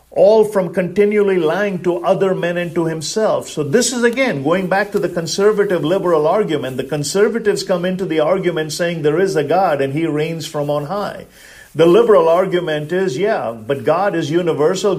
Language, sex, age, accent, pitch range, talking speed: English, male, 50-69, Indian, 145-185 Hz, 190 wpm